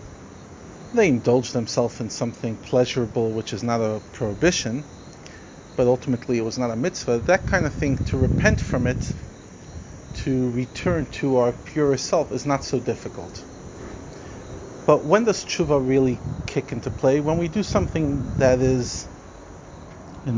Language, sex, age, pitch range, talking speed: English, male, 40-59, 115-145 Hz, 150 wpm